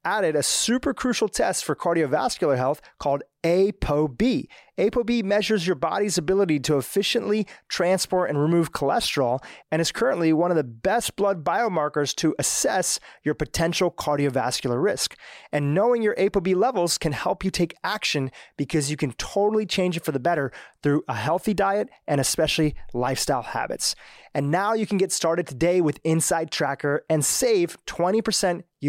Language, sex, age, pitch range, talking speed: English, male, 30-49, 145-190 Hz, 160 wpm